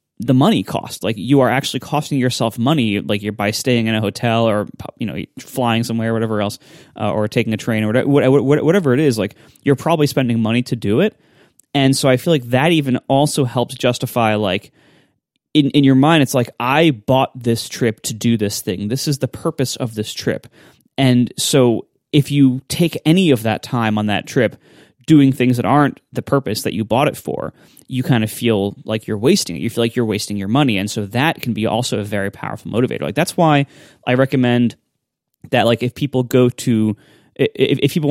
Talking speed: 215 wpm